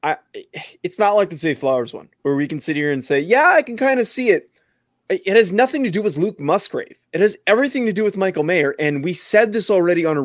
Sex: male